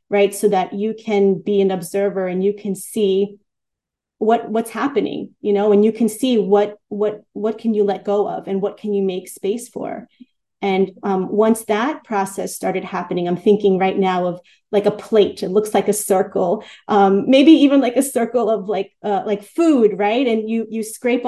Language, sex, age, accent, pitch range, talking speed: English, female, 30-49, American, 195-220 Hz, 205 wpm